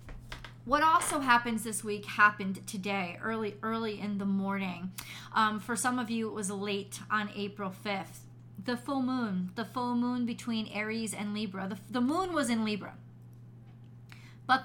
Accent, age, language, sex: American, 30-49, English, female